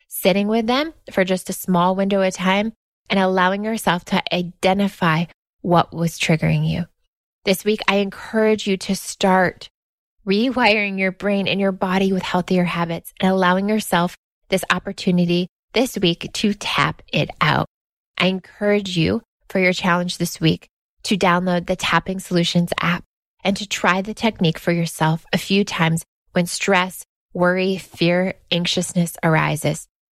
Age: 20-39